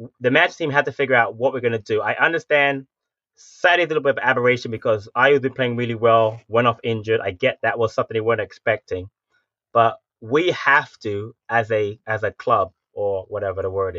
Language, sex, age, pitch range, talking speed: English, male, 20-39, 110-130 Hz, 220 wpm